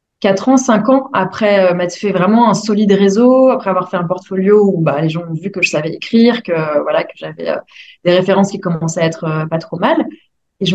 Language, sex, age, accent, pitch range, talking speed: French, female, 20-39, French, 180-225 Hz, 250 wpm